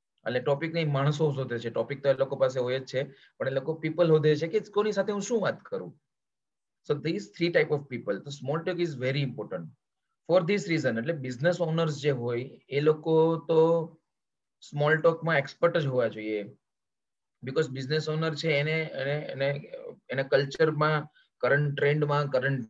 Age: 30-49